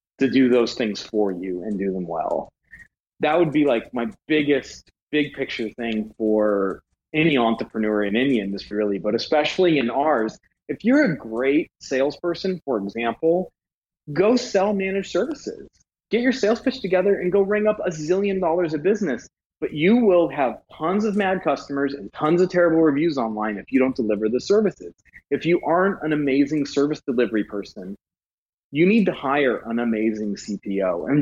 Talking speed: 175 wpm